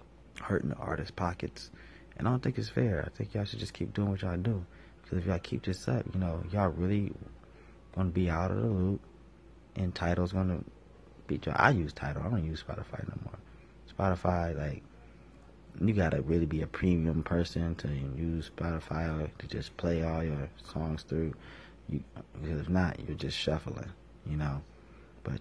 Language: English